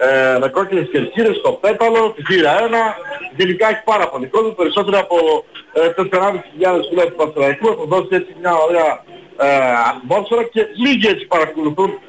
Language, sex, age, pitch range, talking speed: Greek, male, 40-59, 175-235 Hz, 155 wpm